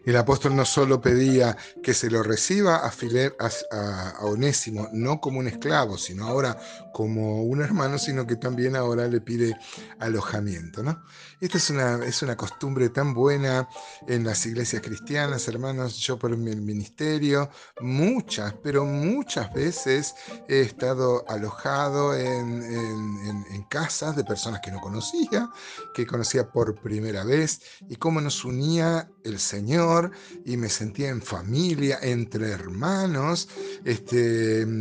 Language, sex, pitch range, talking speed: Spanish, male, 110-145 Hz, 140 wpm